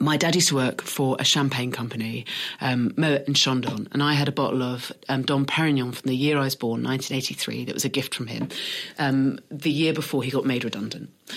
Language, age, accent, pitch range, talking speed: English, 40-59, British, 130-160 Hz, 230 wpm